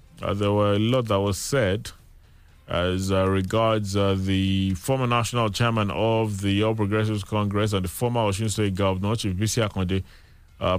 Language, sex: English, male